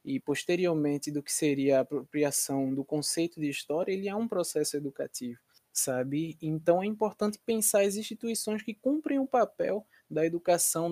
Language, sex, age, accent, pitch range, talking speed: Portuguese, male, 20-39, Brazilian, 140-185 Hz, 160 wpm